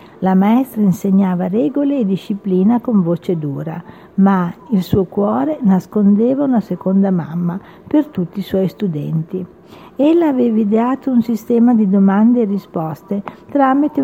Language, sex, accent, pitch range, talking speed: Italian, female, native, 185-240 Hz, 135 wpm